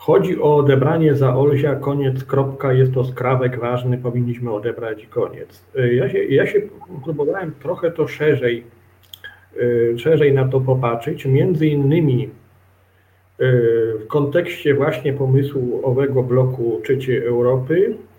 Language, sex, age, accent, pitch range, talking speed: Polish, male, 40-59, native, 120-145 Hz, 120 wpm